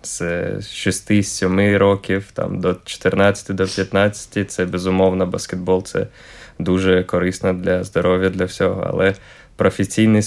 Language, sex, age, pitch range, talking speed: Ukrainian, male, 20-39, 95-100 Hz, 110 wpm